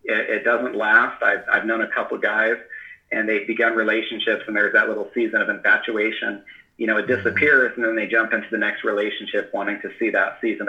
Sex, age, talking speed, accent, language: male, 30-49, 210 wpm, American, English